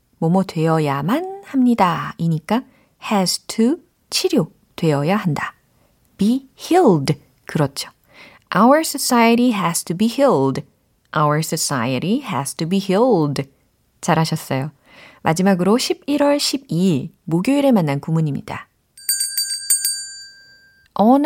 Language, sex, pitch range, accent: Korean, female, 155-255 Hz, native